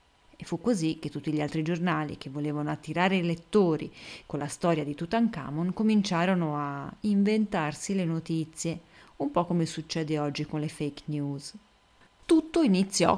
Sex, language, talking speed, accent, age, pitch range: female, Italian, 155 wpm, native, 30-49, 155-190 Hz